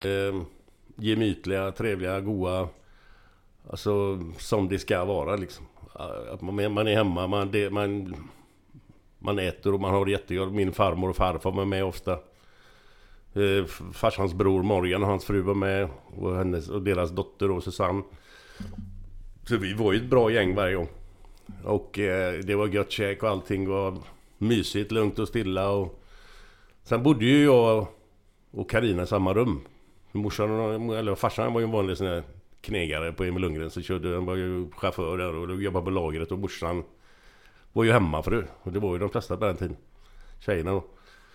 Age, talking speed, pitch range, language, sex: 50-69, 165 wpm, 90-105 Hz, Swedish, male